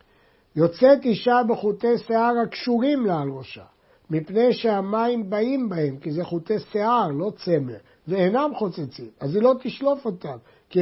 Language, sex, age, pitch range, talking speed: Hebrew, male, 60-79, 160-225 Hz, 145 wpm